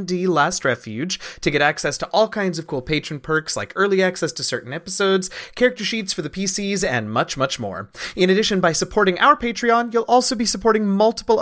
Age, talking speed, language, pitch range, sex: 30-49, 200 wpm, English, 145-200 Hz, male